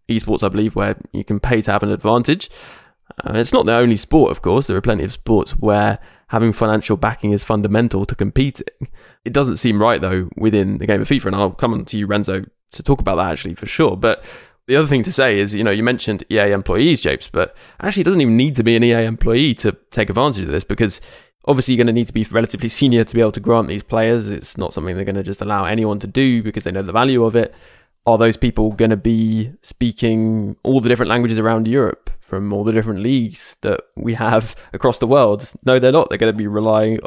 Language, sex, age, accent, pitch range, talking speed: English, male, 10-29, British, 105-120 Hz, 250 wpm